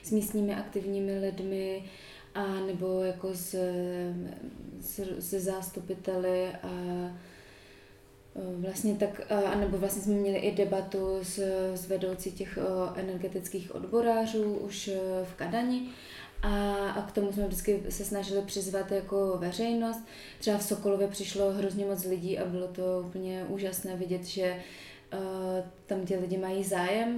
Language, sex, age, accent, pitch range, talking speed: Czech, female, 20-39, native, 185-200 Hz, 130 wpm